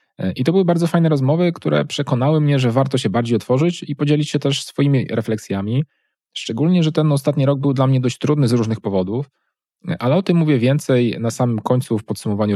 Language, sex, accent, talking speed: Polish, male, native, 205 wpm